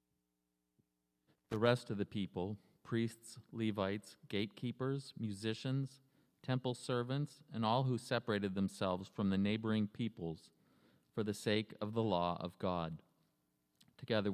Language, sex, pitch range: English, male, 85-110 Hz